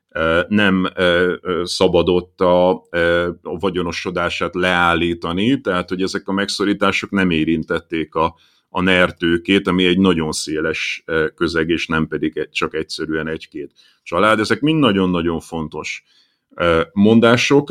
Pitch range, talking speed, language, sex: 90-125 Hz, 110 wpm, Hungarian, male